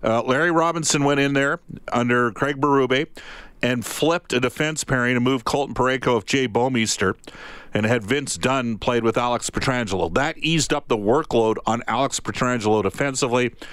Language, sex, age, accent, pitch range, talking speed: English, male, 50-69, American, 115-140 Hz, 165 wpm